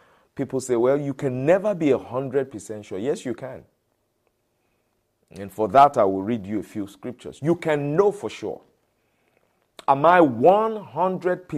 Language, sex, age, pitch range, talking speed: English, male, 50-69, 110-160 Hz, 150 wpm